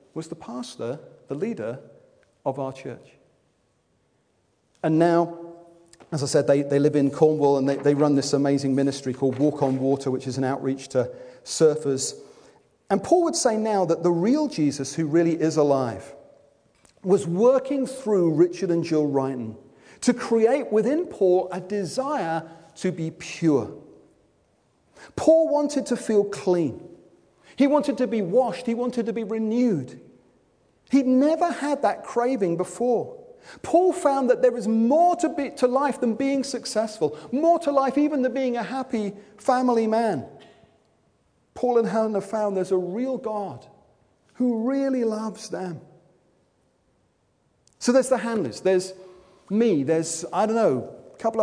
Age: 40-59